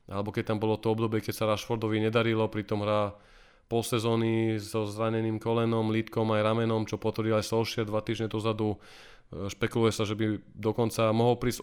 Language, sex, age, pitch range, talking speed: Slovak, male, 20-39, 110-120 Hz, 175 wpm